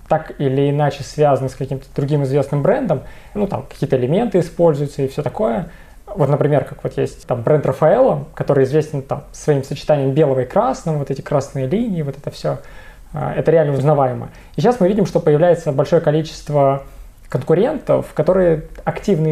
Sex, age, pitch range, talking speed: male, 20-39, 140-170 Hz, 165 wpm